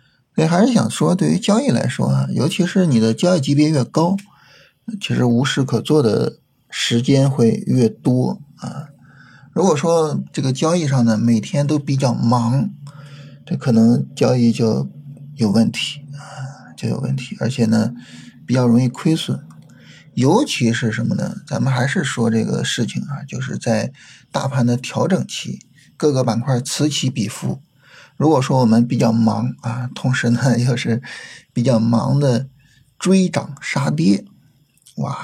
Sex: male